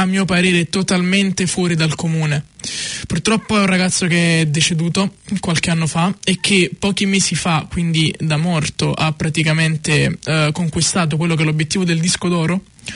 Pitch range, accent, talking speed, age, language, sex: 155-180 Hz, native, 160 wpm, 20-39, Italian, male